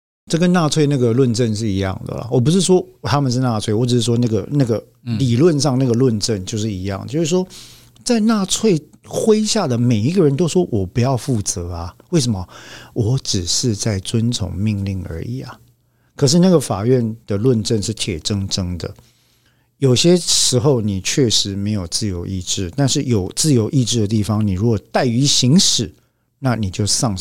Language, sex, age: Chinese, male, 50-69